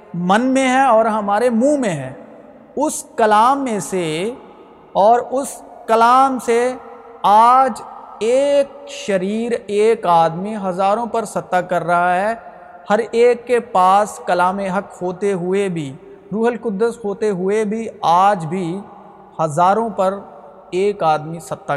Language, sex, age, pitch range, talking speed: Urdu, male, 50-69, 180-240 Hz, 130 wpm